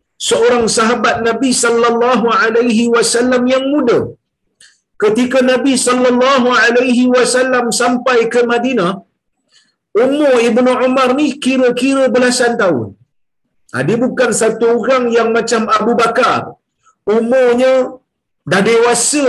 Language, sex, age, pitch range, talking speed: Malayalam, male, 50-69, 230-260 Hz, 110 wpm